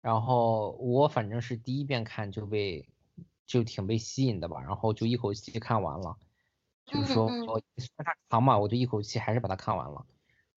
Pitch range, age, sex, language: 115-150 Hz, 20-39, male, Chinese